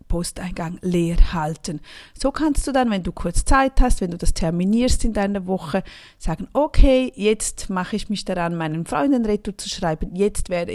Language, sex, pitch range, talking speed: German, female, 175-215 Hz, 175 wpm